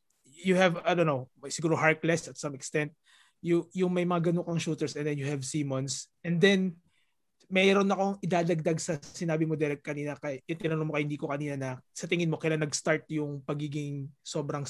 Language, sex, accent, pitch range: English, male, Filipino, 145-175 Hz